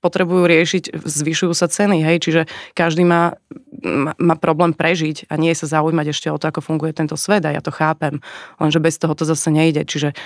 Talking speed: 205 wpm